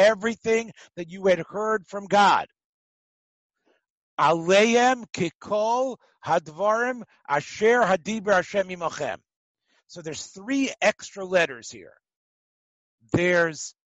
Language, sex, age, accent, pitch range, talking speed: English, male, 60-79, American, 175-245 Hz, 75 wpm